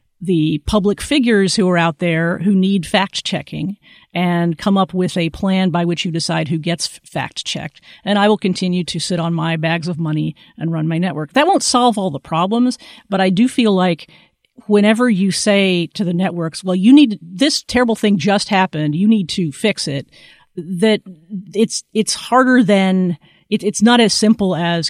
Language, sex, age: English, female, 50-69